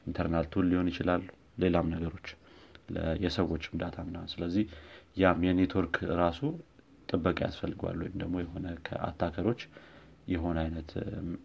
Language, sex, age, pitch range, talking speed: Amharic, male, 30-49, 85-95 Hz, 95 wpm